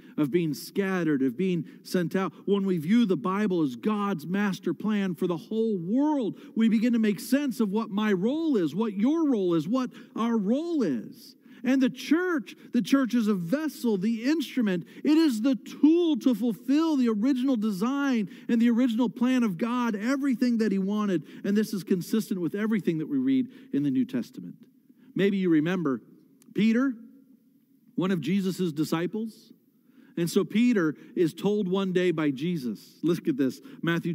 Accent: American